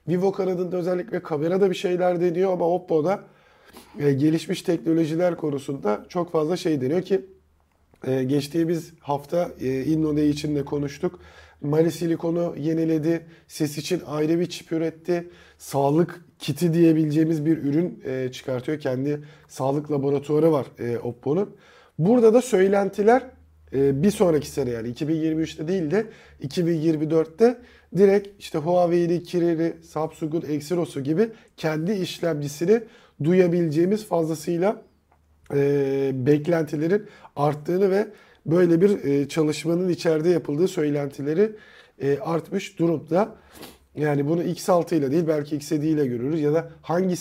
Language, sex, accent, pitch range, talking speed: Turkish, male, native, 145-175 Hz, 115 wpm